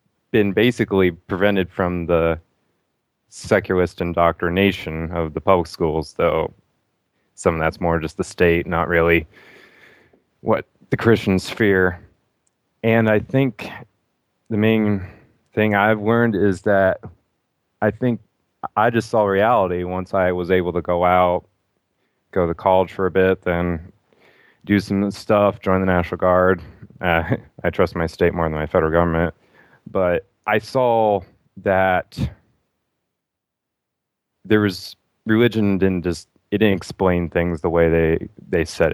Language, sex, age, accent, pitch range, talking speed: English, male, 20-39, American, 85-105 Hz, 140 wpm